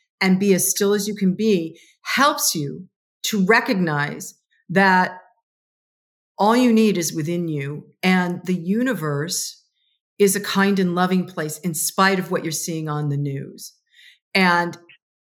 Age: 40-59